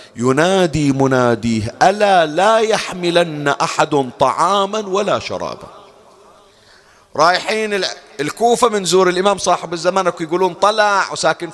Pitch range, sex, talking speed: 135-215 Hz, male, 100 wpm